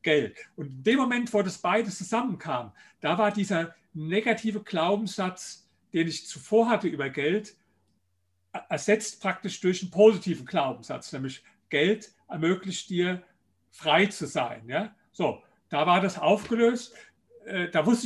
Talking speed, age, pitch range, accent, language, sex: 135 wpm, 50-69, 170-210 Hz, German, German, male